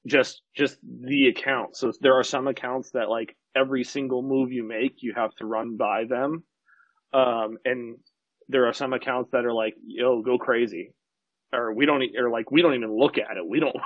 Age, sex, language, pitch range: 30-49, male, English, 120-165 Hz